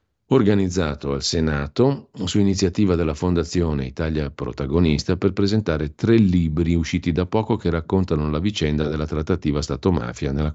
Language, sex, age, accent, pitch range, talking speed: Italian, male, 50-69, native, 70-90 Hz, 135 wpm